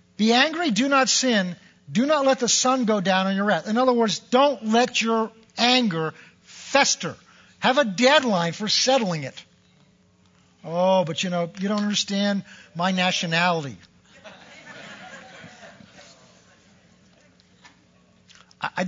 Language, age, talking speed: English, 50-69, 125 wpm